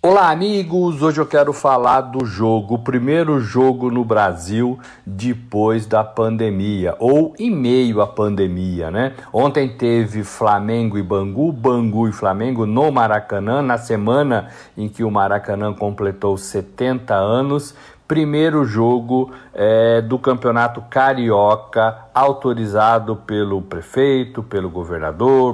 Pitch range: 100-130 Hz